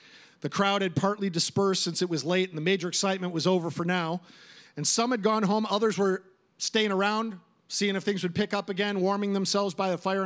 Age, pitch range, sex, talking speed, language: 50-69, 165-205 Hz, male, 220 wpm, English